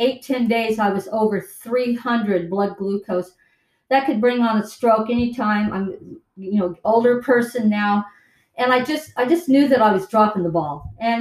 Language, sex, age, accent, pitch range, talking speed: English, female, 50-69, American, 205-245 Hz, 180 wpm